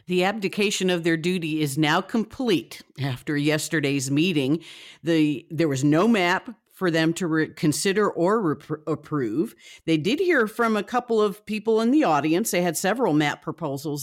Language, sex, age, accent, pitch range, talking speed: English, female, 50-69, American, 150-185 Hz, 170 wpm